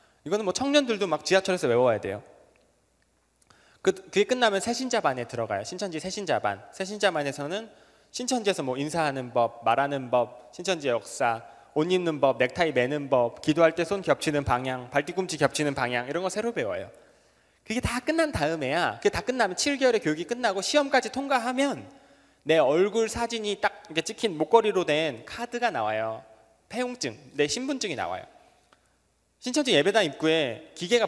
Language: Korean